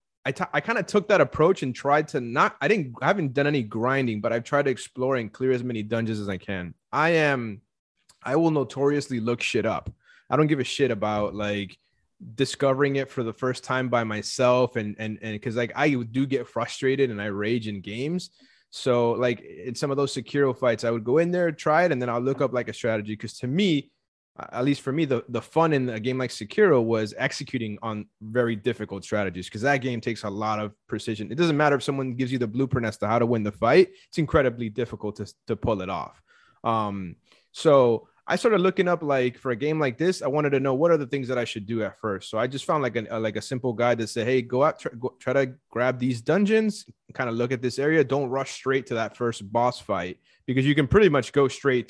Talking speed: 245 wpm